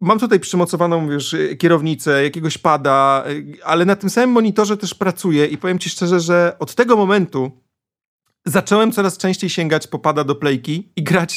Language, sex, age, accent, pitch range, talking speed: Polish, male, 40-59, native, 155-195 Hz, 165 wpm